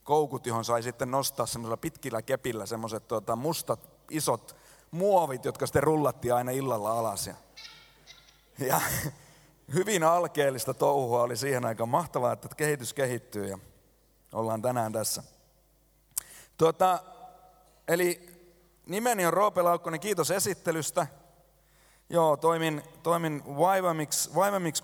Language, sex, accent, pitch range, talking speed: Finnish, male, native, 125-160 Hz, 115 wpm